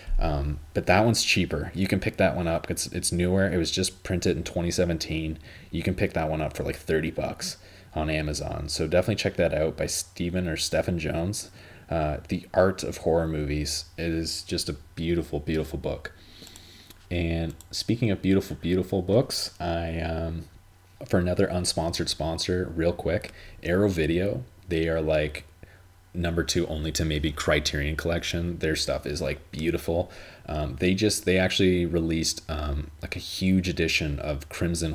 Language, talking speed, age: English, 170 wpm, 30-49